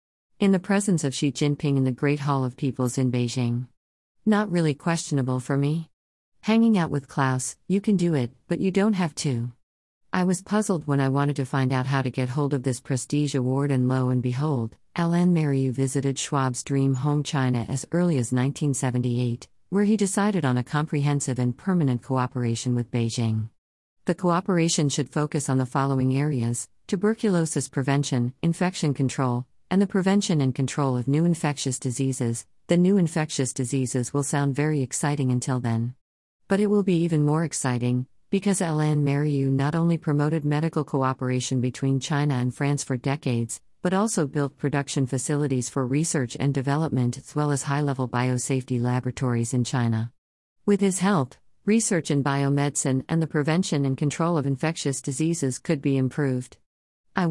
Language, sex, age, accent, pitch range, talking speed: English, female, 50-69, American, 130-160 Hz, 170 wpm